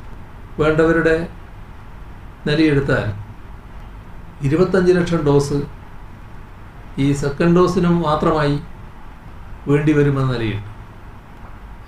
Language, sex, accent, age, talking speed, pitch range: Malayalam, male, native, 60-79, 55 wpm, 105-160 Hz